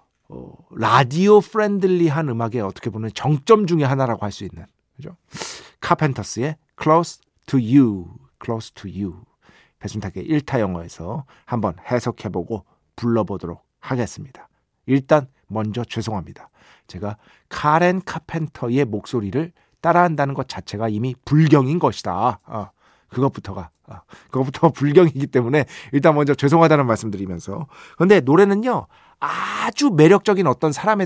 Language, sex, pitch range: Korean, male, 115-170 Hz